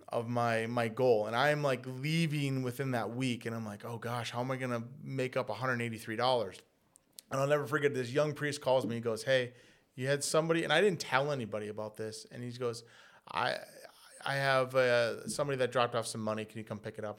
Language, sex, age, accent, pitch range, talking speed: English, male, 30-49, American, 120-165 Hz, 225 wpm